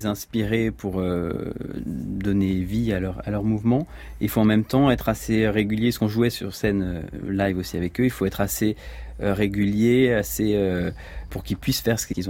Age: 40-59